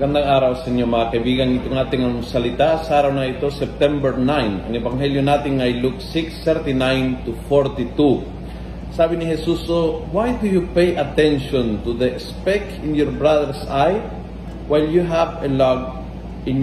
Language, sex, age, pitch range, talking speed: Filipino, male, 40-59, 130-180 Hz, 170 wpm